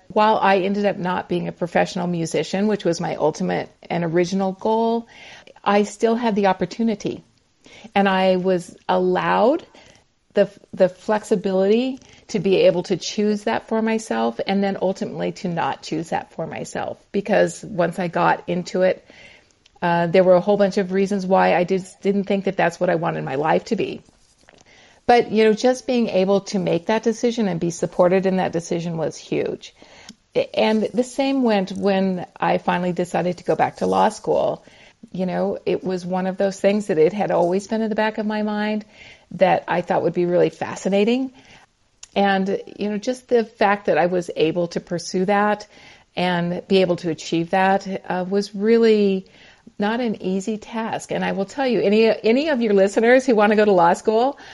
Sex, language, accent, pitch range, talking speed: female, English, American, 185-215 Hz, 190 wpm